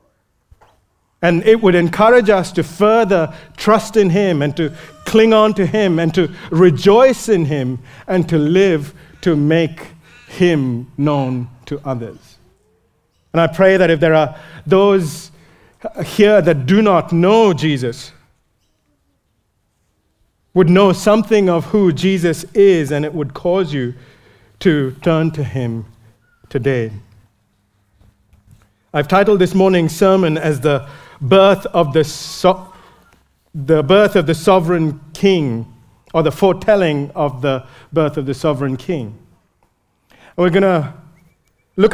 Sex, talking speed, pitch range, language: male, 130 wpm, 135-185 Hz, English